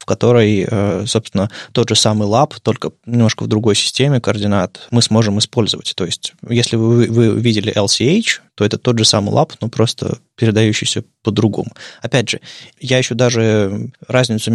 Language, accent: Russian, native